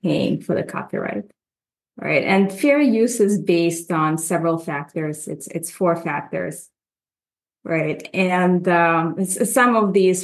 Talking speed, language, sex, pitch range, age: 135 wpm, English, female, 165-195 Hz, 30-49